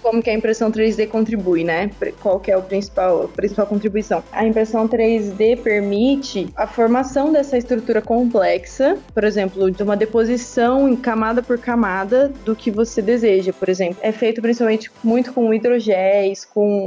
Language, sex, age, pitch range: Portuguese, female, 20-39, 195-245 Hz